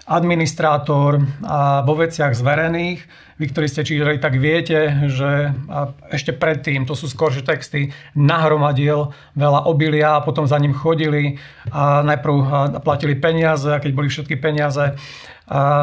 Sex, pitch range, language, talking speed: male, 145-160 Hz, Slovak, 135 wpm